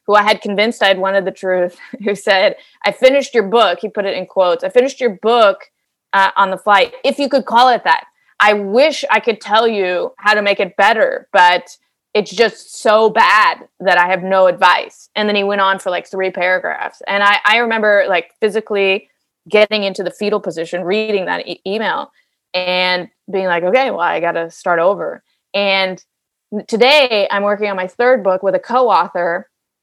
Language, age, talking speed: English, 20-39, 200 wpm